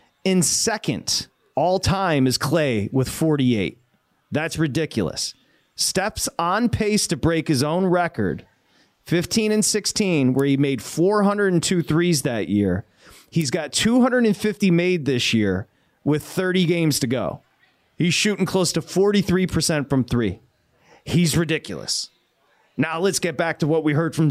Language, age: English, 30-49